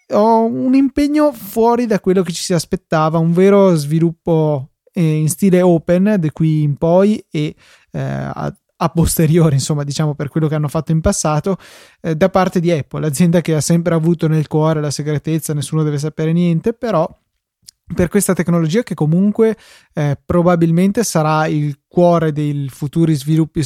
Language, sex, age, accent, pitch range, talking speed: Italian, male, 20-39, native, 150-175 Hz, 170 wpm